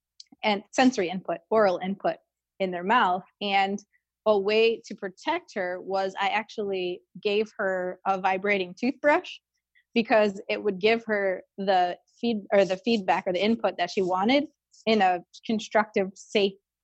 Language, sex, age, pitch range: English, female, 20-39, 190-220 Hz